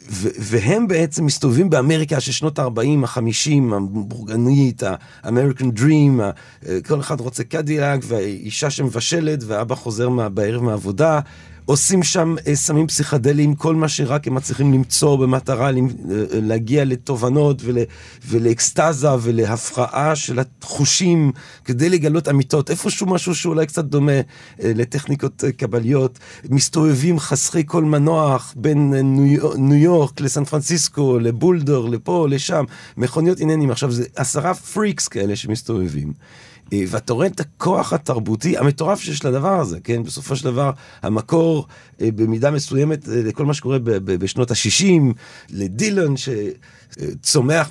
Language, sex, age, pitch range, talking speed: Hebrew, male, 40-59, 115-150 Hz, 120 wpm